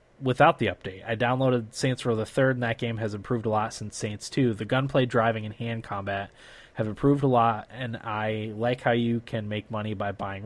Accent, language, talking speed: American, English, 225 wpm